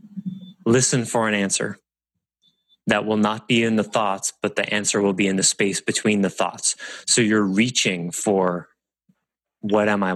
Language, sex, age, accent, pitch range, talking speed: English, male, 20-39, American, 95-120 Hz, 170 wpm